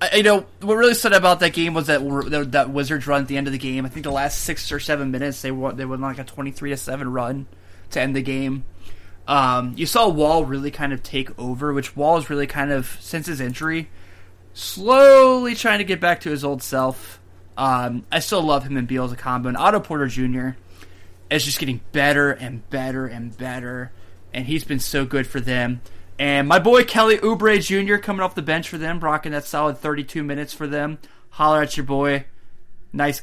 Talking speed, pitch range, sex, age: 220 wpm, 125-155 Hz, male, 20-39